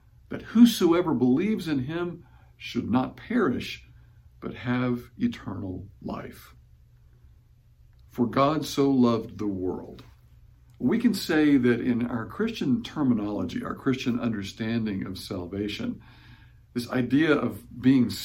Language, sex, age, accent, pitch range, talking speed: English, male, 60-79, American, 110-155 Hz, 115 wpm